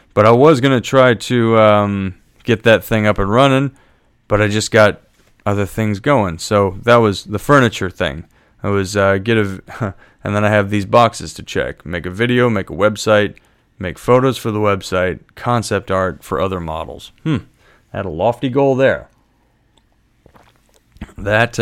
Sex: male